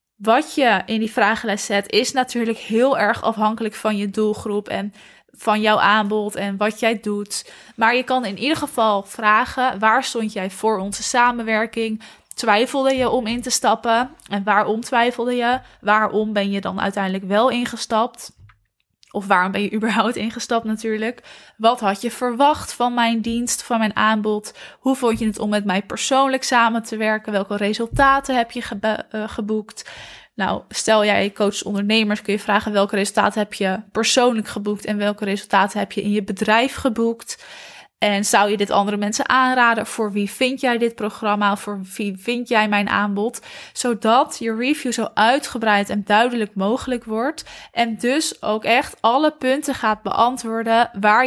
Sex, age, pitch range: female, 20-39, 210-240 Hz